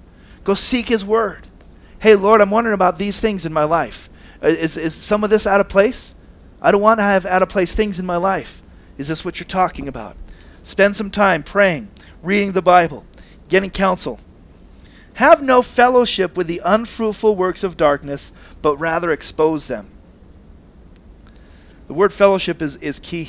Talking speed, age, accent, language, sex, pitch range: 175 wpm, 40-59, American, English, male, 130-190 Hz